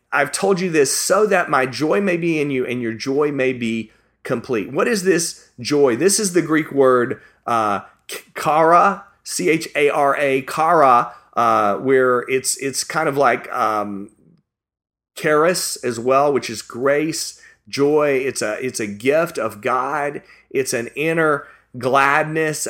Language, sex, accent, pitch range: English, male, American, 130-175 Hz